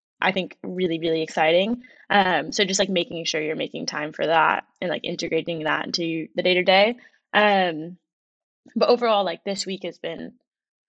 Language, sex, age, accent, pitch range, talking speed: English, female, 10-29, American, 180-230 Hz, 180 wpm